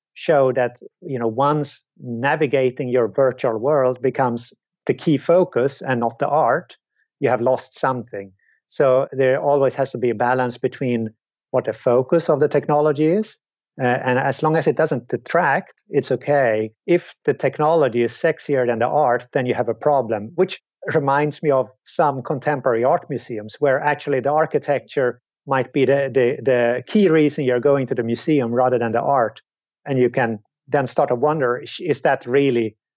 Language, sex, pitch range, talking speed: English, male, 120-145 Hz, 180 wpm